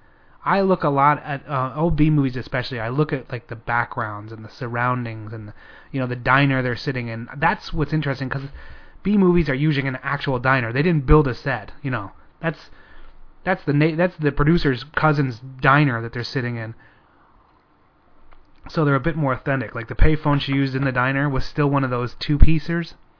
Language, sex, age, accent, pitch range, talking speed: English, male, 30-49, American, 125-145 Hz, 190 wpm